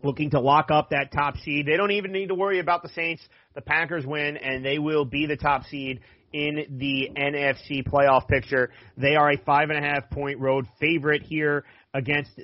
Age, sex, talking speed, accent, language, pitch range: 30-49, male, 195 wpm, American, English, 135-160 Hz